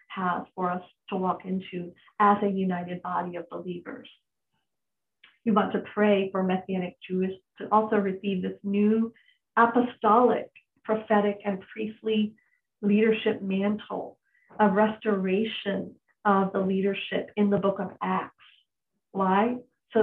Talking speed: 125 wpm